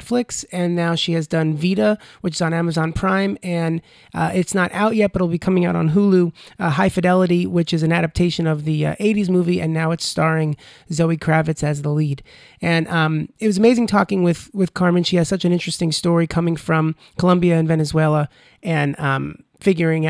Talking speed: 205 wpm